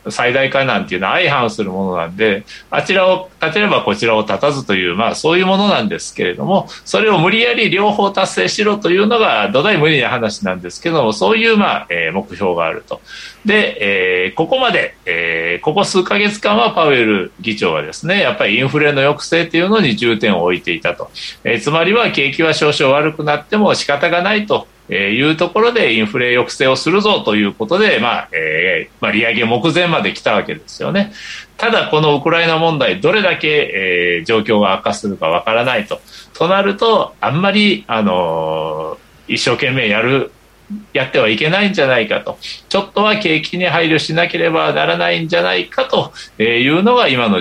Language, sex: Japanese, male